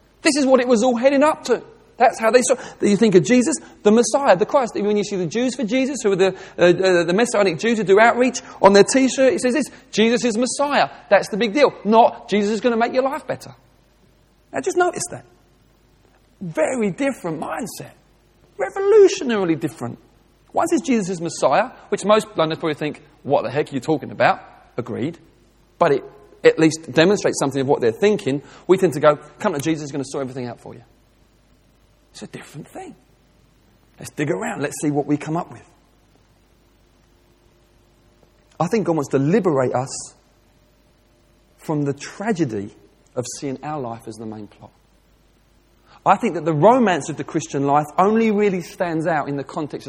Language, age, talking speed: English, 40-59, 195 wpm